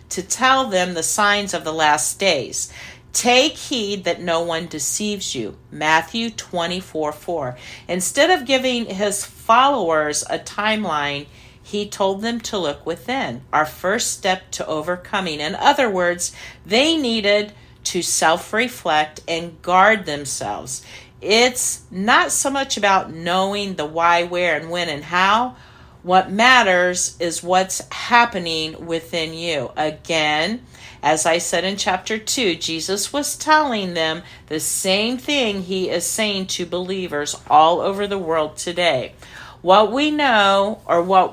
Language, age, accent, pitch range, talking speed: English, 50-69, American, 160-210 Hz, 140 wpm